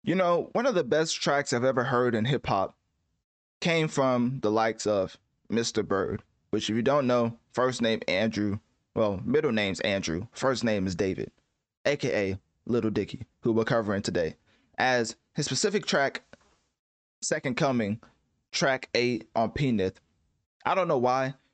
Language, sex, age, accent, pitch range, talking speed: English, male, 20-39, American, 110-135 Hz, 160 wpm